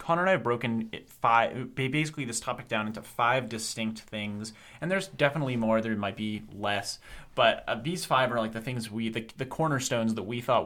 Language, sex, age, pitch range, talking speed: English, male, 30-49, 105-135 Hz, 215 wpm